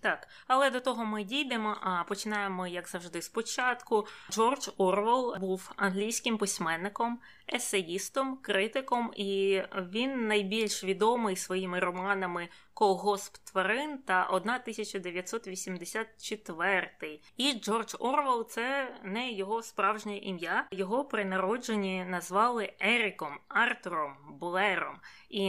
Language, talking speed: Ukrainian, 110 wpm